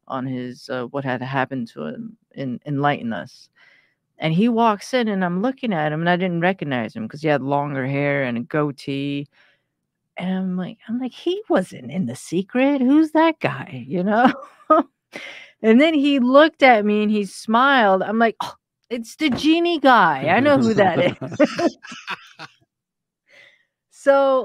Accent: American